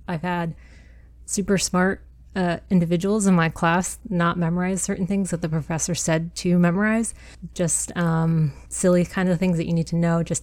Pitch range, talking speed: 165-185 Hz, 180 wpm